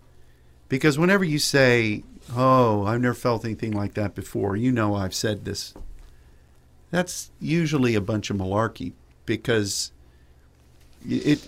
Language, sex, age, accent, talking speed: English, male, 50-69, American, 130 wpm